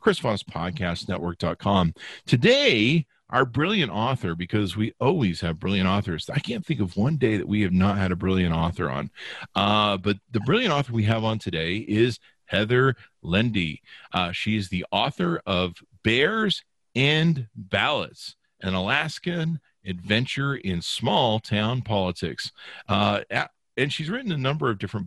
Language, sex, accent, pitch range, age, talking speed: English, male, American, 95-140 Hz, 40-59, 150 wpm